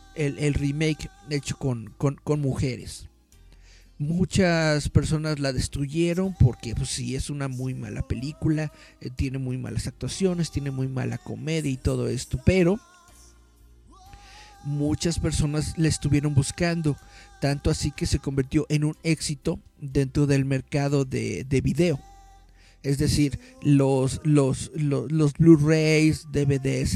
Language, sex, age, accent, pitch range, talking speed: Spanish, male, 50-69, Mexican, 130-155 Hz, 130 wpm